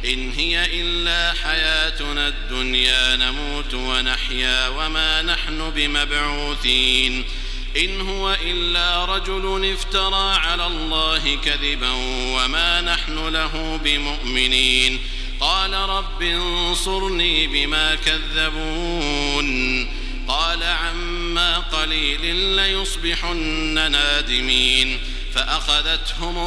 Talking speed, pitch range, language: 75 wpm, 135-175 Hz, Arabic